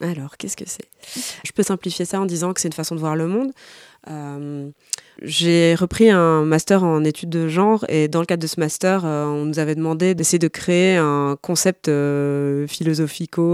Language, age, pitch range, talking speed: French, 20-39, 150-180 Hz, 205 wpm